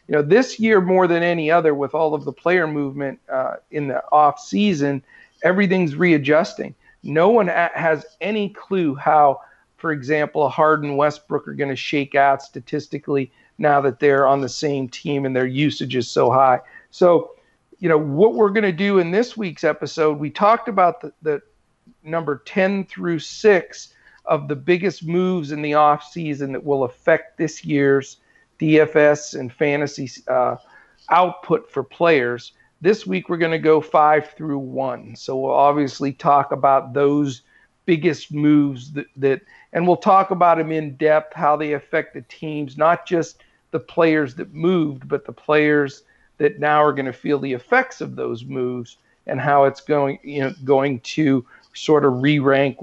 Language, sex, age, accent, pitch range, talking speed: English, male, 50-69, American, 140-170 Hz, 175 wpm